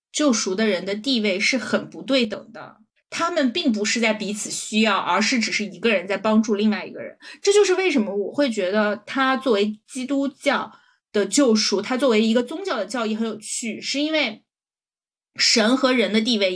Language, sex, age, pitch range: Chinese, female, 20-39, 210-260 Hz